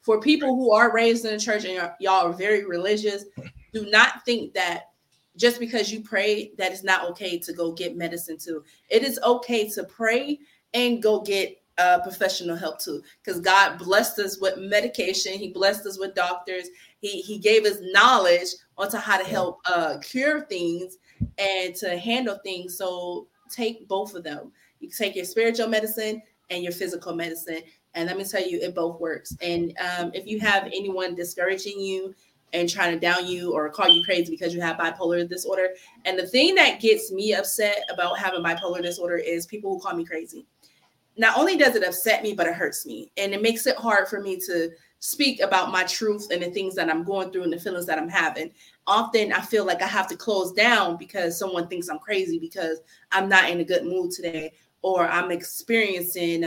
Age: 20-39